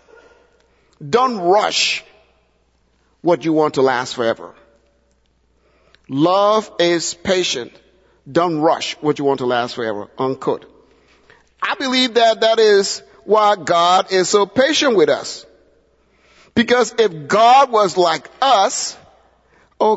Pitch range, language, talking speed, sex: 170-250 Hz, English, 115 wpm, male